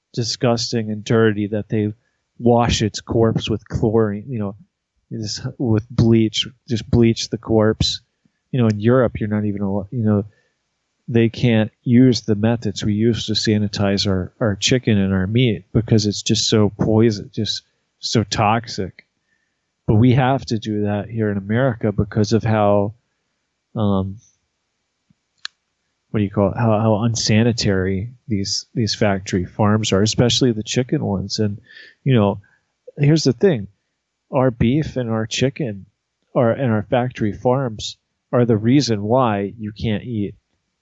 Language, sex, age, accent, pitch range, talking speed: English, male, 30-49, American, 105-120 Hz, 150 wpm